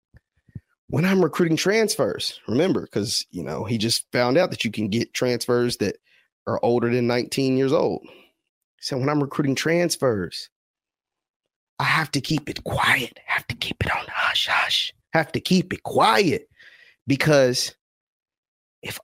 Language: English